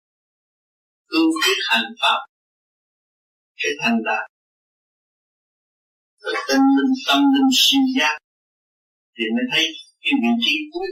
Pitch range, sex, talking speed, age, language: 195-270 Hz, male, 115 wpm, 50-69, Vietnamese